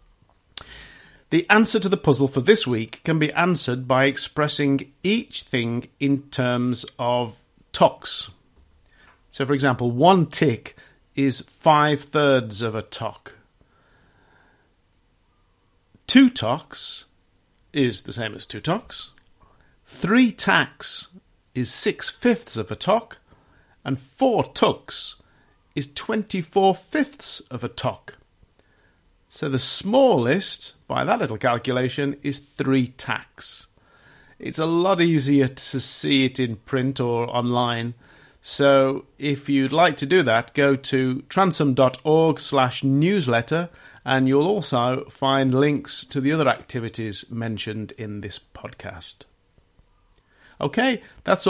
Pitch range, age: 125-160 Hz, 50-69